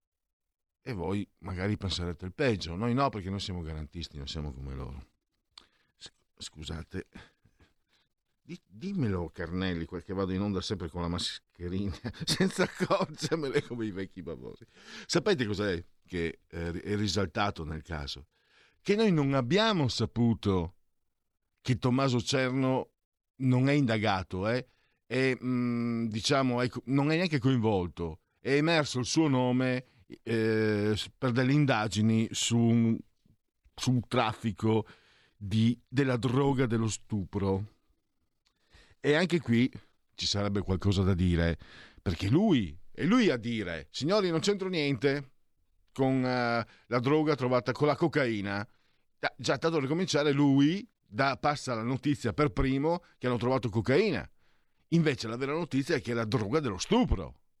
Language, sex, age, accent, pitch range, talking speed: Italian, male, 50-69, native, 95-135 Hz, 135 wpm